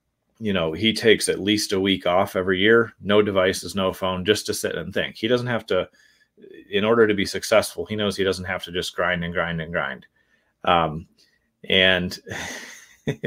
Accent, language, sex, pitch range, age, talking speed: American, English, male, 90-110 Hz, 30-49, 195 wpm